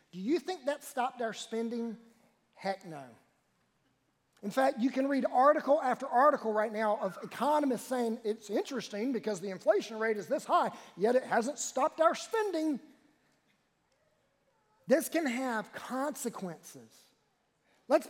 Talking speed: 140 wpm